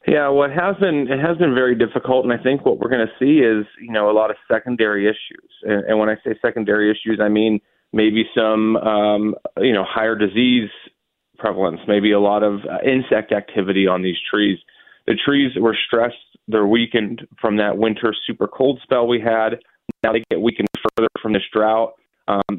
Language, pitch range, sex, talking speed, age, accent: English, 105-120 Hz, male, 195 wpm, 30-49, American